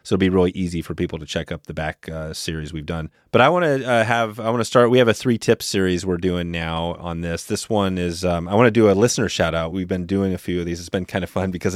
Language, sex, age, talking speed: English, male, 30-49, 300 wpm